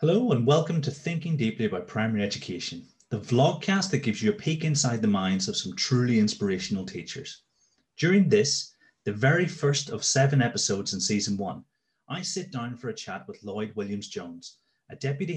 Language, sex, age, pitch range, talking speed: English, male, 30-49, 110-155 Hz, 185 wpm